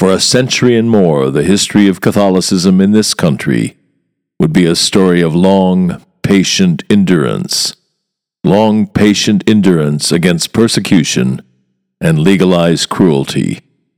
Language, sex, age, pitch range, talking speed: English, male, 50-69, 90-110 Hz, 120 wpm